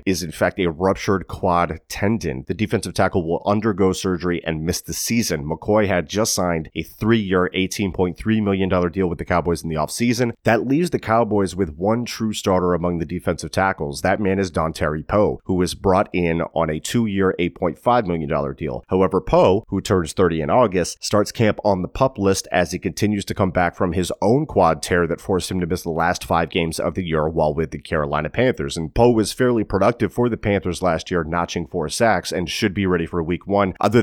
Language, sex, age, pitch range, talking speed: English, male, 30-49, 85-100 Hz, 215 wpm